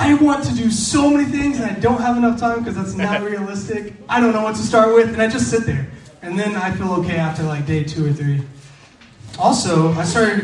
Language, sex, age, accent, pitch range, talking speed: English, male, 20-39, American, 155-230 Hz, 245 wpm